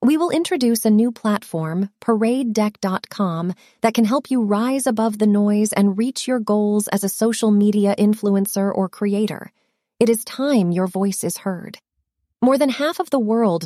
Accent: American